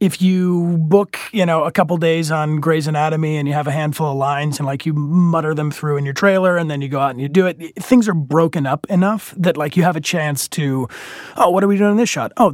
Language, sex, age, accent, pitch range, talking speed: English, male, 30-49, American, 140-185 Hz, 275 wpm